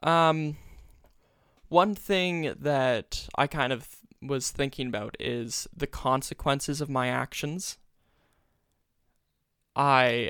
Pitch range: 125-145 Hz